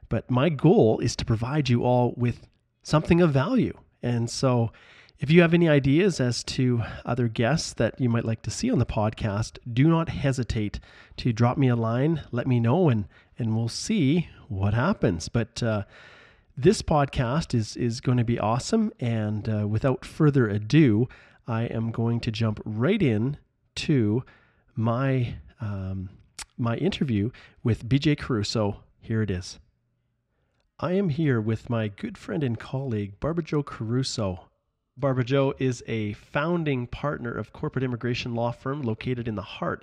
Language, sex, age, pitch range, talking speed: English, male, 30-49, 110-130 Hz, 165 wpm